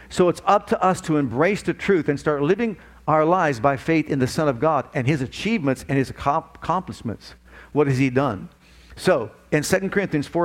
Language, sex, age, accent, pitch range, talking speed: English, male, 50-69, American, 125-170 Hz, 200 wpm